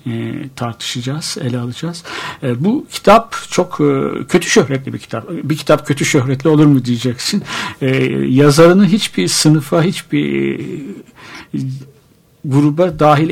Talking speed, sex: 105 wpm, male